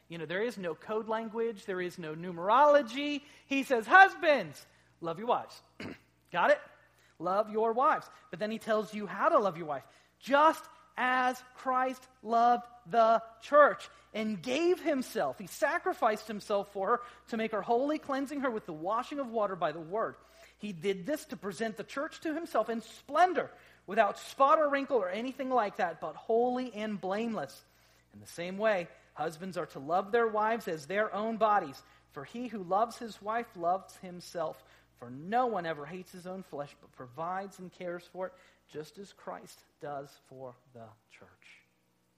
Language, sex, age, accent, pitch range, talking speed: English, male, 40-59, American, 160-235 Hz, 180 wpm